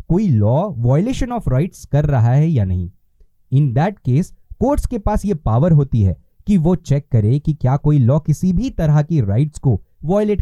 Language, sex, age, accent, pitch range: Hindi, male, 20-39, native, 120-170 Hz